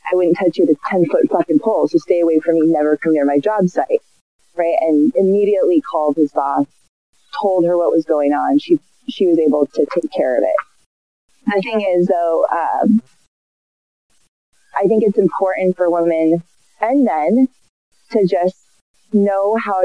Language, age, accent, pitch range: English, 30-49, American, 170-230 Hz